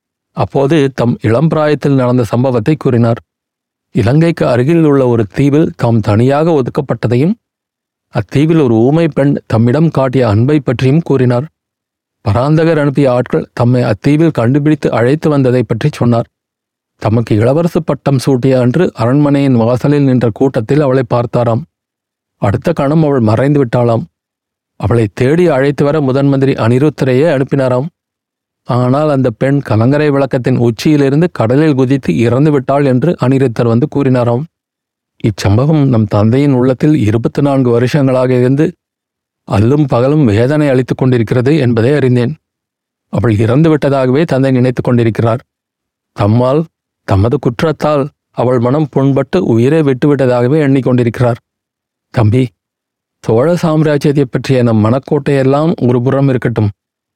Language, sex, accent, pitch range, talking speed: Tamil, male, native, 120-150 Hz, 110 wpm